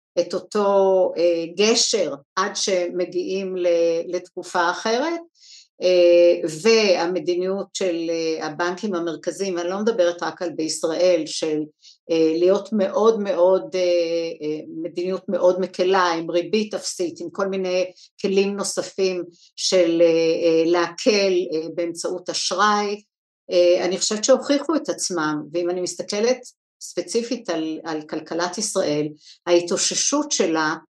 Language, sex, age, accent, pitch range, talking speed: Hebrew, female, 60-79, native, 170-195 Hz, 120 wpm